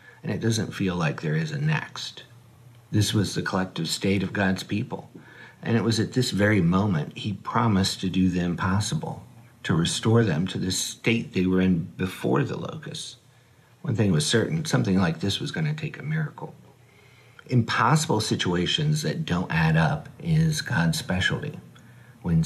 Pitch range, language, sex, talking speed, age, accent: 100-155 Hz, English, male, 170 wpm, 50-69, American